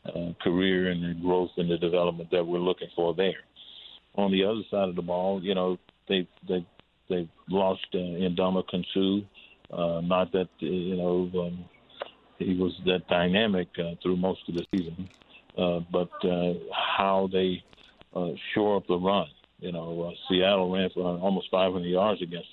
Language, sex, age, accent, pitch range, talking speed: English, male, 50-69, American, 90-95 Hz, 170 wpm